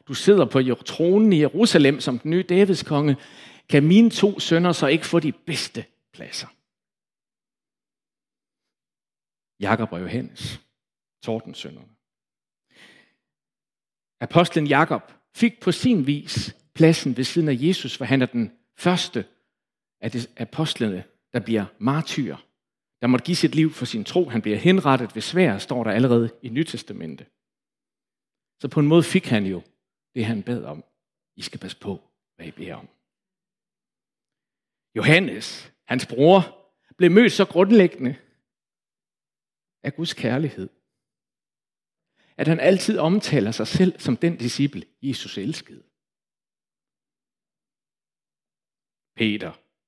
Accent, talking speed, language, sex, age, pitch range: Danish, 130 wpm, English, male, 60-79, 120-175 Hz